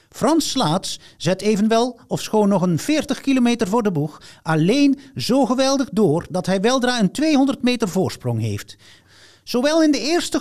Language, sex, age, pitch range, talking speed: Dutch, male, 50-69, 140-230 Hz, 165 wpm